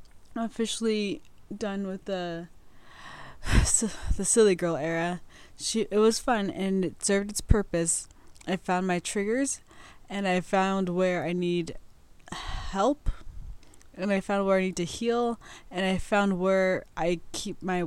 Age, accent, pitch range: 20-39, American, 175-215 Hz